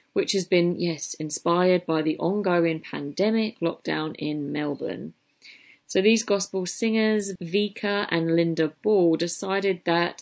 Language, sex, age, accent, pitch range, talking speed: English, female, 30-49, British, 160-200 Hz, 130 wpm